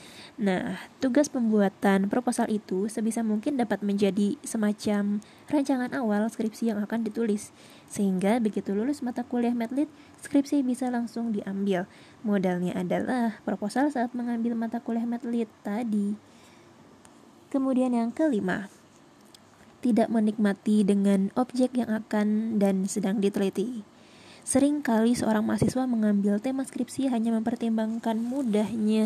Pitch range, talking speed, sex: 215-245 Hz, 115 wpm, female